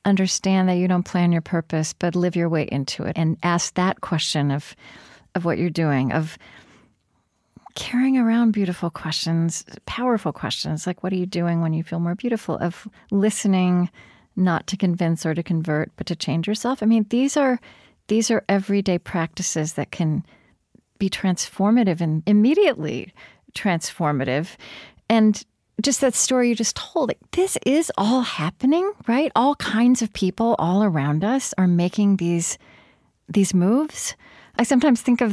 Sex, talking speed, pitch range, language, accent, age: female, 160 wpm, 170-230 Hz, English, American, 40-59